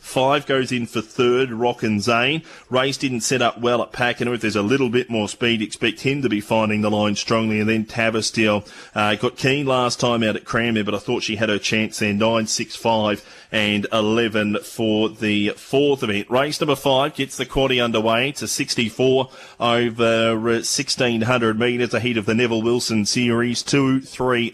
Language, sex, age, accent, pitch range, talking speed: English, male, 30-49, Australian, 110-130 Hz, 195 wpm